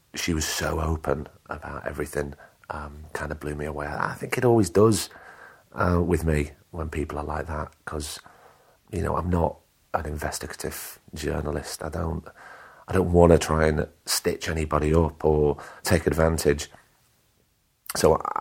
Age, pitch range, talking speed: 40-59, 75-85 Hz, 155 wpm